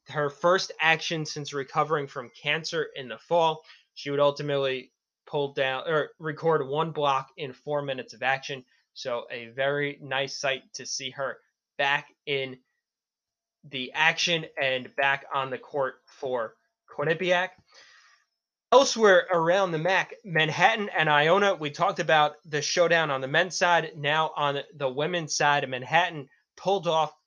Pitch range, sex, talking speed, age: 135-165 Hz, male, 145 wpm, 20-39